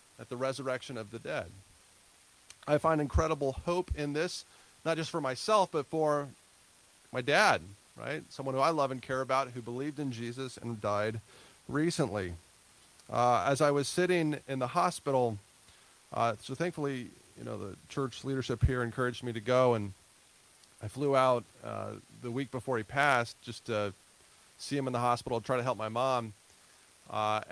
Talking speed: 170 wpm